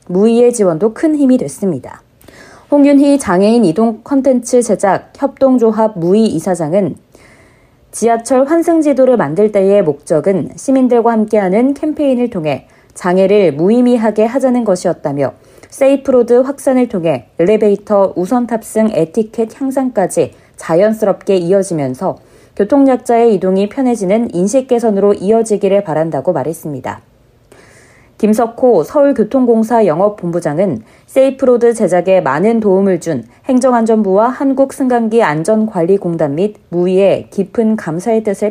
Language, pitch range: Korean, 185-245 Hz